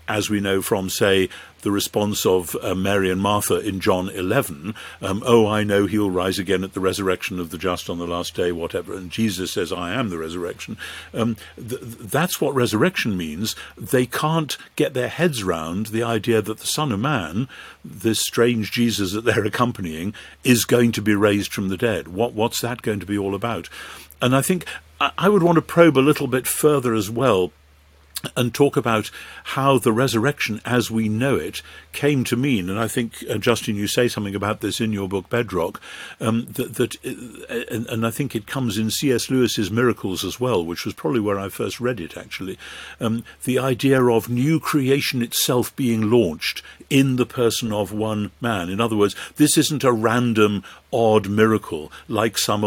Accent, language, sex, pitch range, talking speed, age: British, English, male, 95-125 Hz, 195 wpm, 50-69